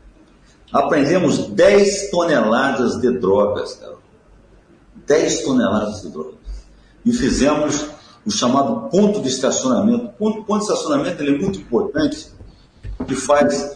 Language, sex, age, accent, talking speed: Portuguese, male, 60-79, Brazilian, 120 wpm